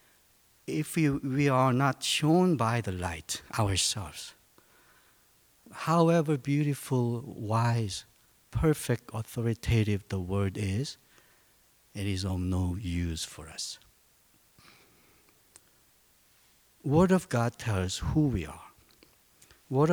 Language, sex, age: Korean, male, 60-79